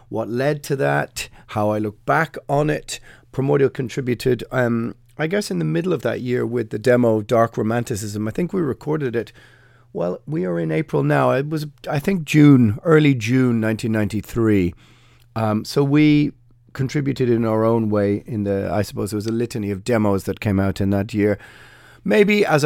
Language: English